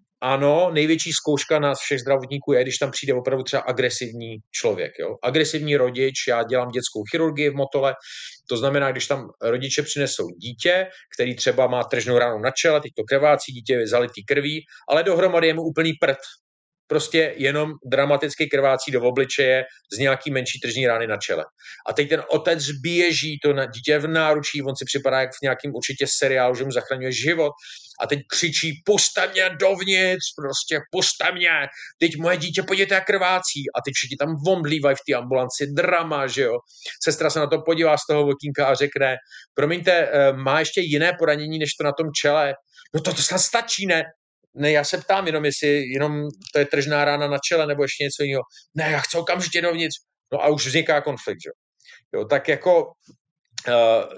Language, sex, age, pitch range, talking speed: Slovak, male, 40-59, 135-160 Hz, 185 wpm